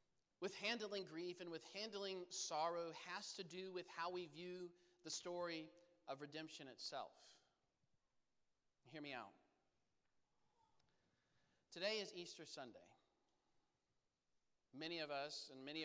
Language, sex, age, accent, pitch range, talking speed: English, male, 40-59, American, 150-190 Hz, 115 wpm